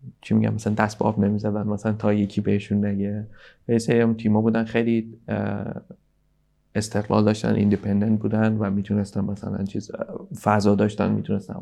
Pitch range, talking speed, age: 100-110 Hz, 135 wpm, 30-49